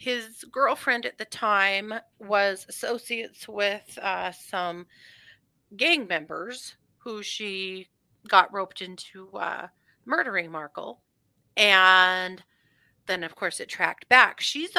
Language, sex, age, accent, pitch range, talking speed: English, female, 40-59, American, 180-250 Hz, 115 wpm